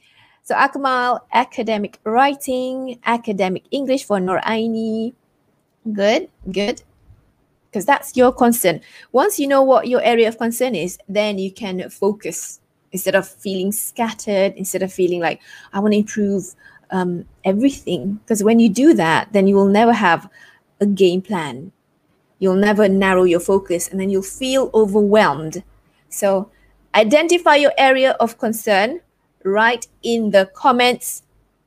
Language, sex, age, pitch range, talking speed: English, female, 20-39, 200-250 Hz, 140 wpm